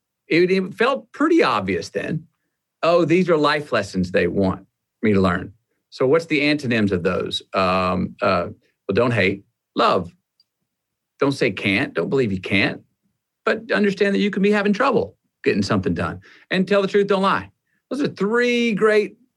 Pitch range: 105-165 Hz